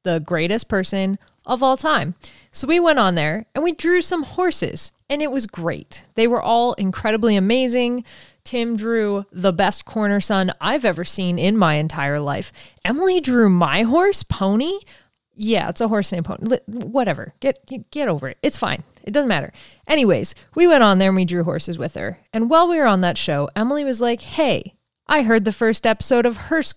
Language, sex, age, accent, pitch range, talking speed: English, female, 20-39, American, 180-260 Hz, 195 wpm